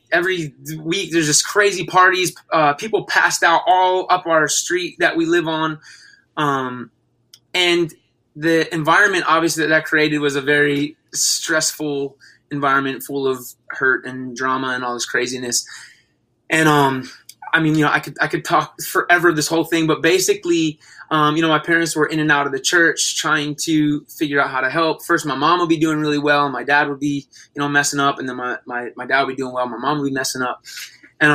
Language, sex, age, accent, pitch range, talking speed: English, male, 20-39, American, 140-165 Hz, 205 wpm